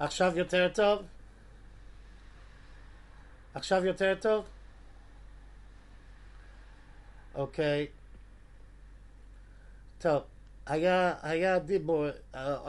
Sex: male